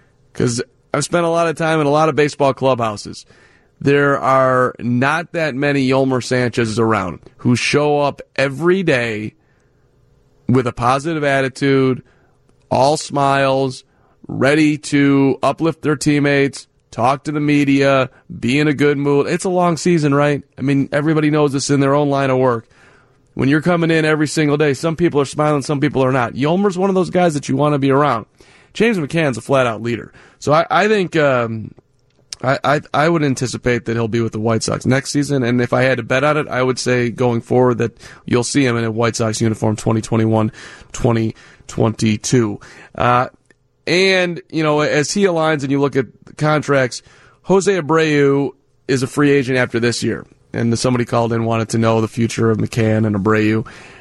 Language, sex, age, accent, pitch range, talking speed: English, male, 30-49, American, 120-150 Hz, 190 wpm